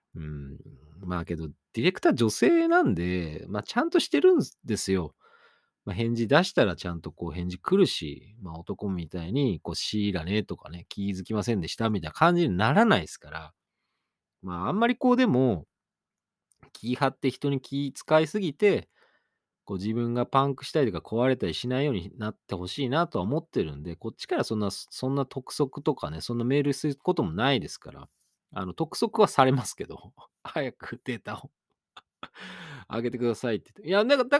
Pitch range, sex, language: 90-150 Hz, male, Japanese